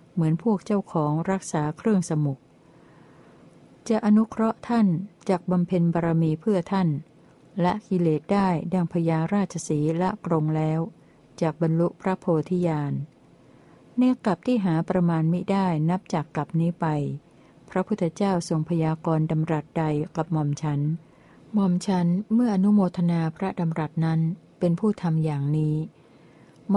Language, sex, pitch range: Thai, female, 155-185 Hz